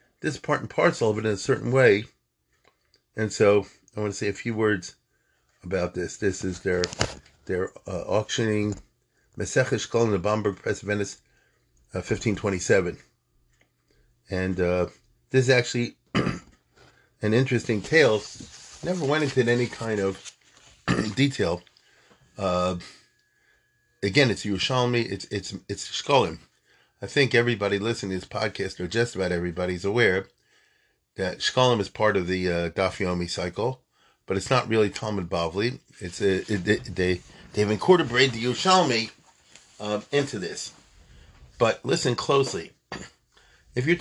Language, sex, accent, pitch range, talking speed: English, male, American, 95-125 Hz, 145 wpm